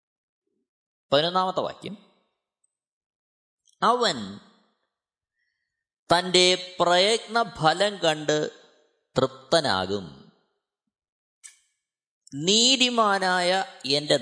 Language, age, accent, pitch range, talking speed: Malayalam, 20-39, native, 135-200 Hz, 40 wpm